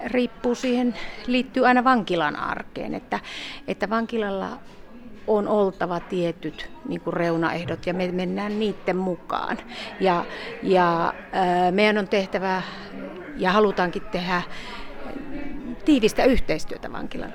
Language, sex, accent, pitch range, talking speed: Finnish, female, native, 185-240 Hz, 105 wpm